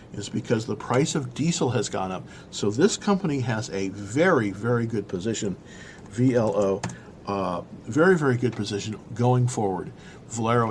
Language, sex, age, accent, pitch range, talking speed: English, male, 50-69, American, 125-175 Hz, 150 wpm